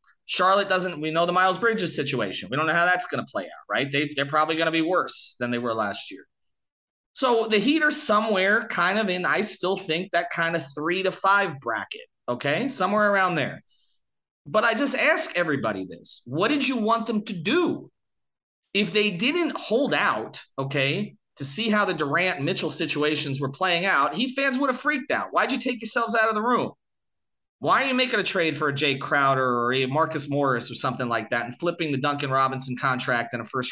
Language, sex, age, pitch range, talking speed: English, male, 30-49, 145-235 Hz, 215 wpm